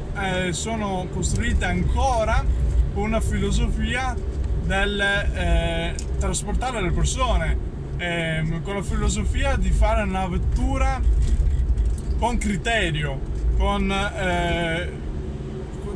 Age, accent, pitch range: 20-39, native, 70-85 Hz